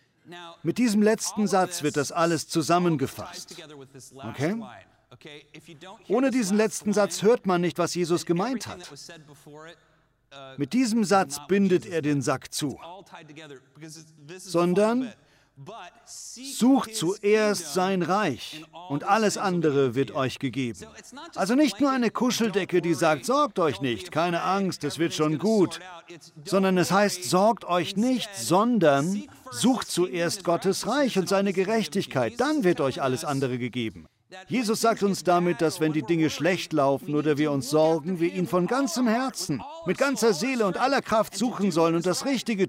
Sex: male